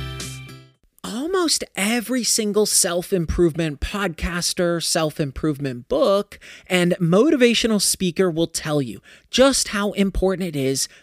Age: 30-49